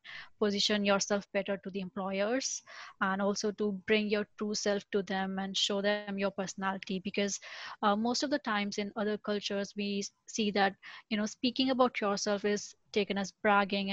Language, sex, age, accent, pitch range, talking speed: English, female, 20-39, Indian, 200-220 Hz, 175 wpm